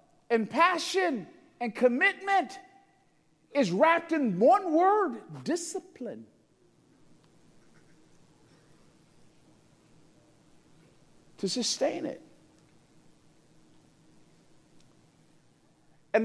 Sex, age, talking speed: male, 50-69, 50 wpm